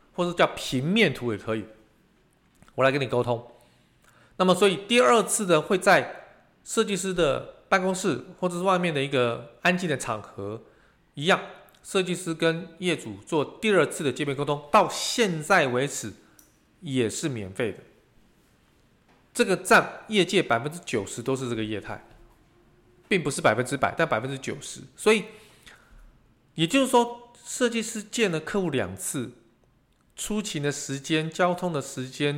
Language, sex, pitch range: Chinese, male, 125-180 Hz